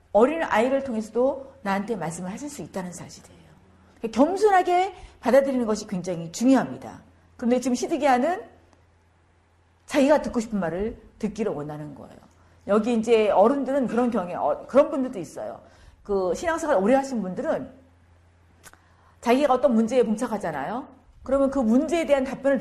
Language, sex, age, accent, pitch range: Korean, female, 40-59, native, 200-275 Hz